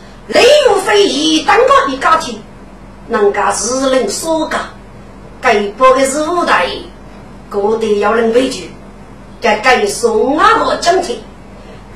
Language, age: Chinese, 50-69